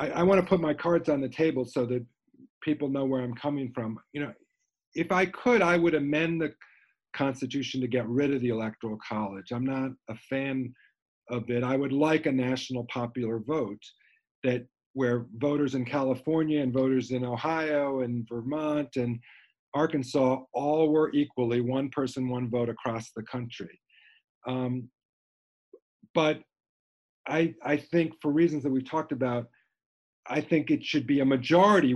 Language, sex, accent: English, male, American